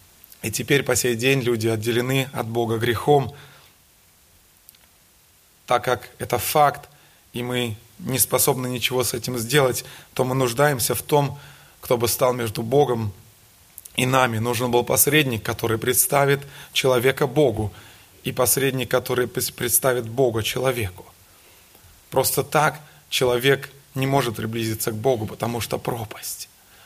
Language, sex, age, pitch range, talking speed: Russian, male, 20-39, 115-135 Hz, 130 wpm